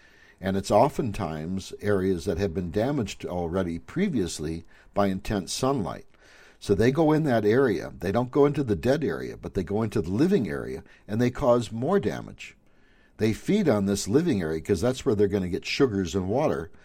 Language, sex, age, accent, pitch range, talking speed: English, male, 60-79, American, 95-125 Hz, 190 wpm